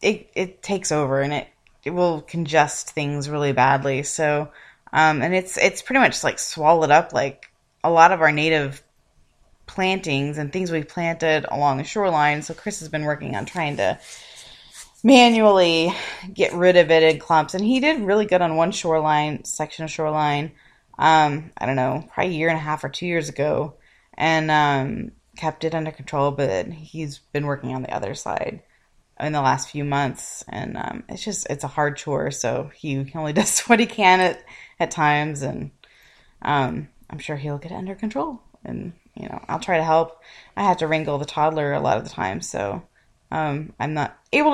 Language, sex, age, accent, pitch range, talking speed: English, female, 20-39, American, 150-180 Hz, 195 wpm